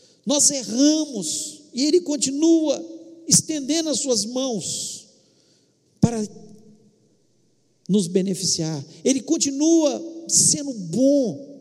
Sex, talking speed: male, 85 wpm